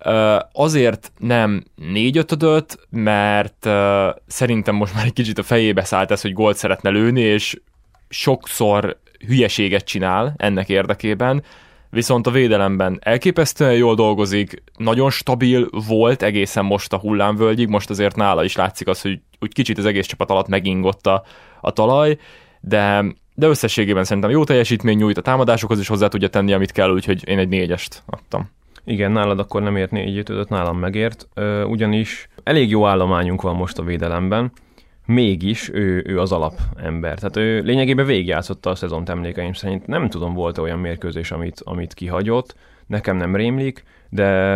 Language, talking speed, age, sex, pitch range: Hungarian, 160 wpm, 20-39, male, 95-110 Hz